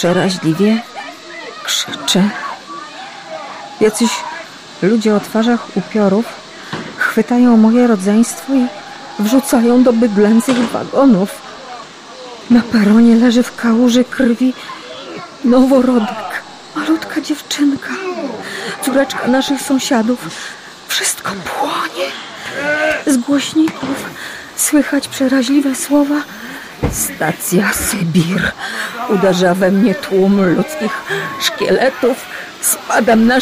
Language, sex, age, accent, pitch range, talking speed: Polish, female, 40-59, native, 235-315 Hz, 80 wpm